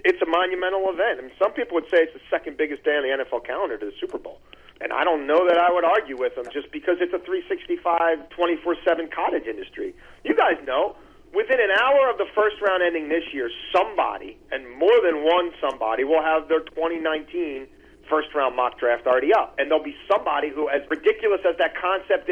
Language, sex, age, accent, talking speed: English, male, 40-59, American, 210 wpm